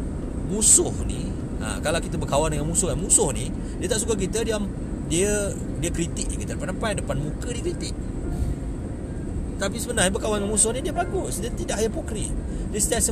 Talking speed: 170 wpm